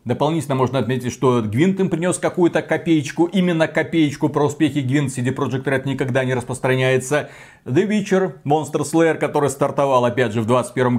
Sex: male